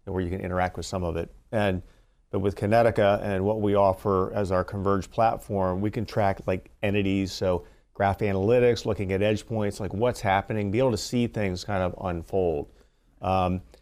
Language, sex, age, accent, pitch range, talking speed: English, male, 40-59, American, 90-110 Hz, 190 wpm